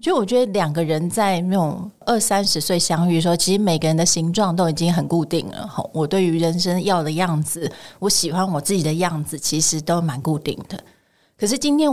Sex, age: female, 30-49